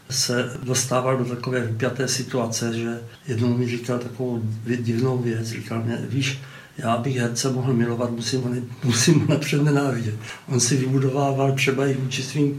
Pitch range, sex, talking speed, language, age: 125-140 Hz, male, 155 wpm, Czech, 60-79